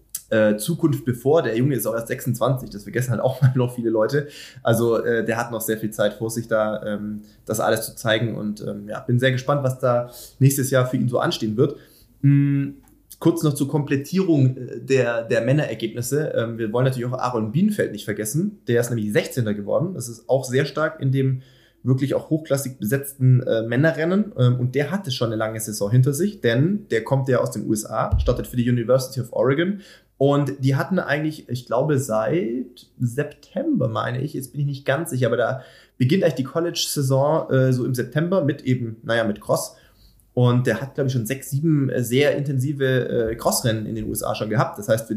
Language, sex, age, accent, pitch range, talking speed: German, male, 20-39, German, 115-140 Hz, 205 wpm